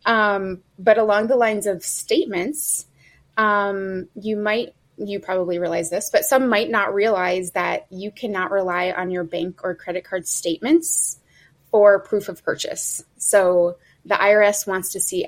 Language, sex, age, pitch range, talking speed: English, female, 20-39, 175-210 Hz, 155 wpm